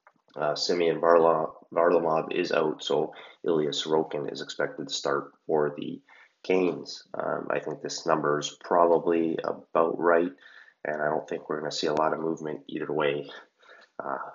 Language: English